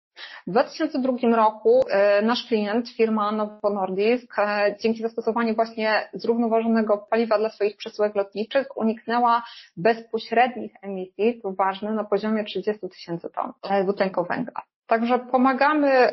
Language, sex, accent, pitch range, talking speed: Polish, female, native, 200-235 Hz, 110 wpm